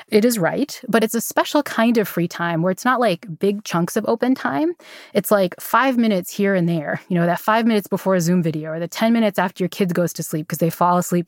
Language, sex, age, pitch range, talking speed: English, female, 20-39, 175-215 Hz, 265 wpm